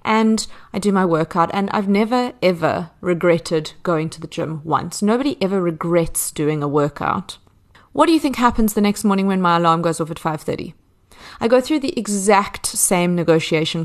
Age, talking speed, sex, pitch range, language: 30-49, 190 wpm, female, 165-220 Hz, English